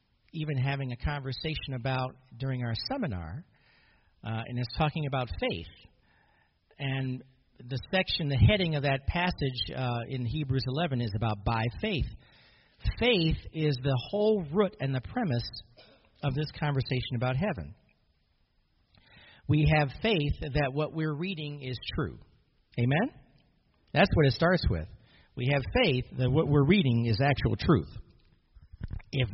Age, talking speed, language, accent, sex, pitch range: 50-69, 140 wpm, English, American, male, 125-160 Hz